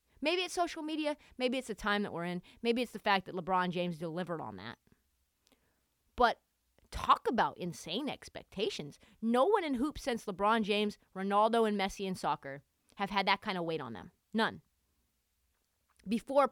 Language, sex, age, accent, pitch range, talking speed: English, female, 30-49, American, 190-265 Hz, 175 wpm